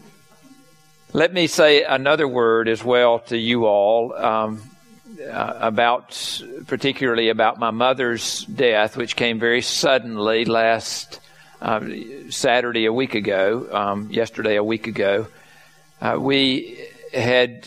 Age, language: 50-69, English